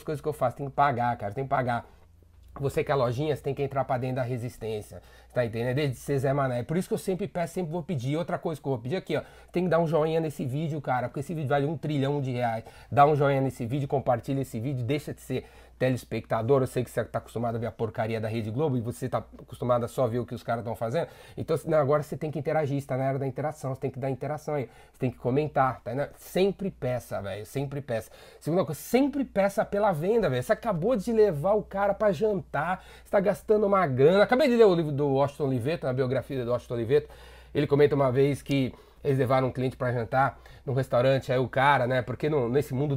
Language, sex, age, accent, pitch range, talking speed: Portuguese, male, 30-49, Brazilian, 125-165 Hz, 255 wpm